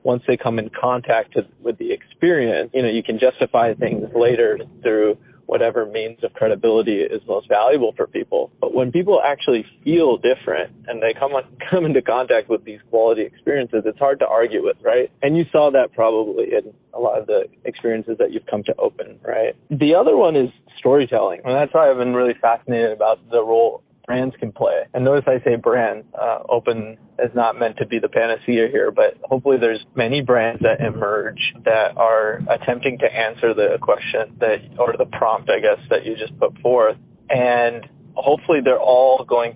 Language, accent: English, American